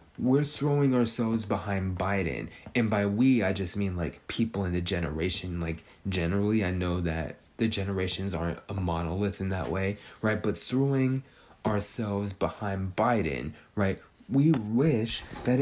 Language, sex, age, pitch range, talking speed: English, male, 20-39, 90-115 Hz, 150 wpm